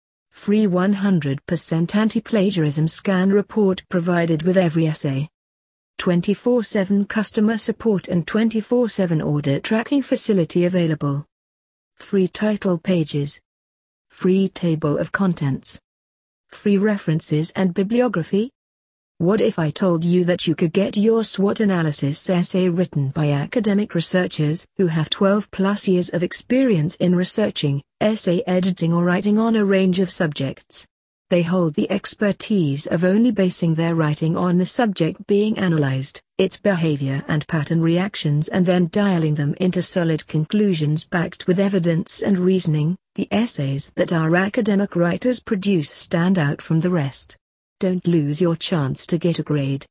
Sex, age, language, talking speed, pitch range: female, 40-59, English, 135 wpm, 155-200 Hz